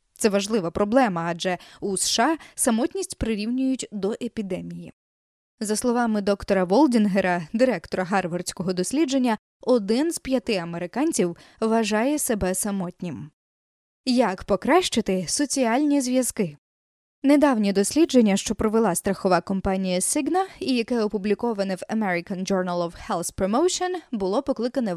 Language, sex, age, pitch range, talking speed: Ukrainian, female, 20-39, 190-260 Hz, 110 wpm